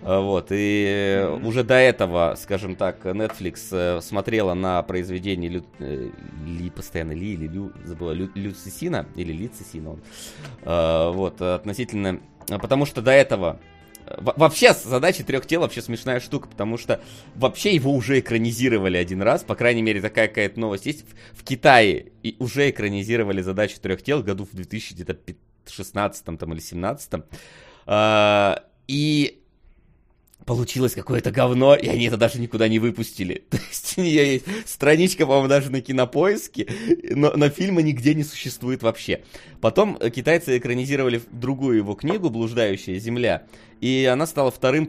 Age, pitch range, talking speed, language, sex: 20-39, 95-130 Hz, 145 wpm, Russian, male